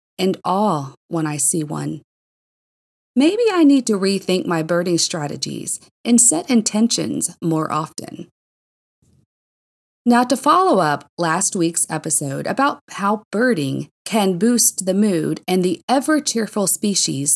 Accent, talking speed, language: American, 130 wpm, English